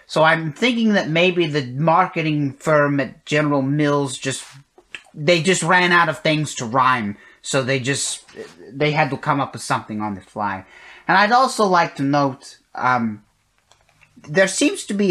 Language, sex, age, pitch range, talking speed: English, male, 30-49, 125-170 Hz, 175 wpm